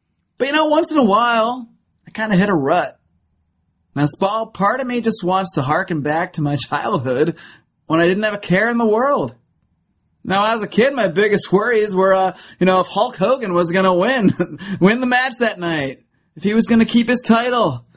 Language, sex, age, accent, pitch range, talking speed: English, male, 30-49, American, 170-225 Hz, 220 wpm